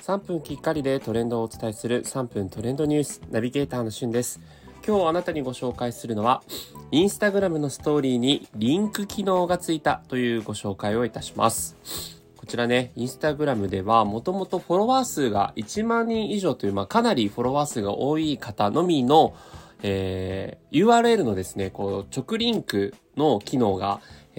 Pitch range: 100-145 Hz